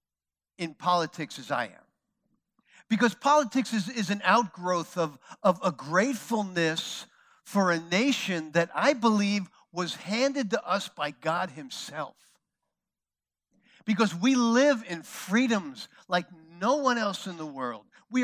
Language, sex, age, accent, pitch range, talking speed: English, male, 50-69, American, 180-245 Hz, 135 wpm